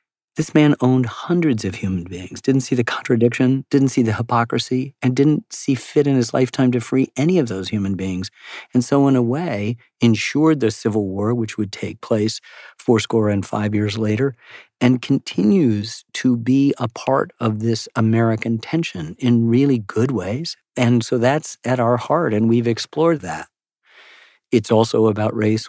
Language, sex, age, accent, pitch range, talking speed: English, male, 40-59, American, 105-125 Hz, 175 wpm